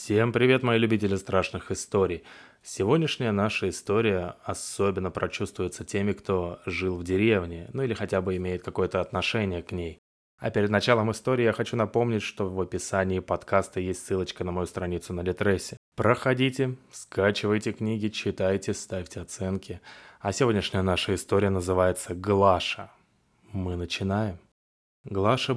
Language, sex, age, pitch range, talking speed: Russian, male, 20-39, 90-110 Hz, 135 wpm